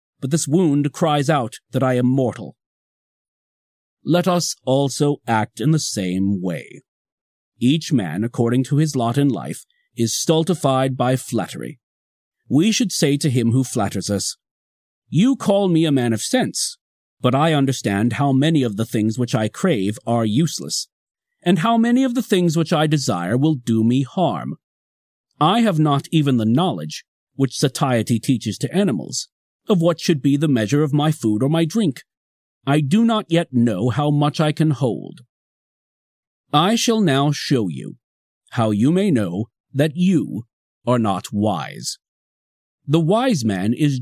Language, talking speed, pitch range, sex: English, 165 wpm, 115-160 Hz, male